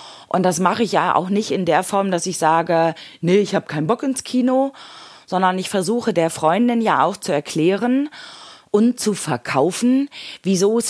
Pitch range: 160-220 Hz